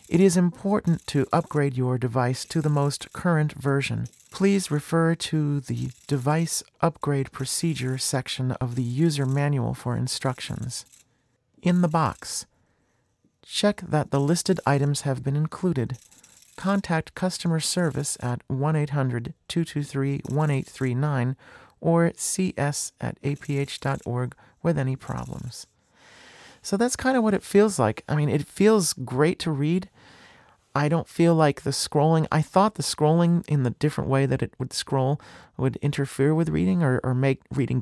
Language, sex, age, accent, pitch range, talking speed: English, male, 40-59, American, 130-165 Hz, 140 wpm